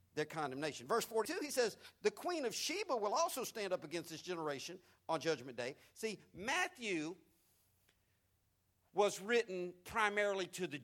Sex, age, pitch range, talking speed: male, 50-69, 165-245 Hz, 150 wpm